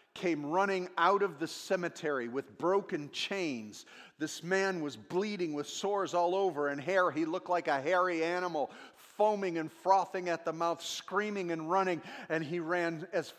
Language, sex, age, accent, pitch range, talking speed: English, male, 40-59, American, 150-185 Hz, 170 wpm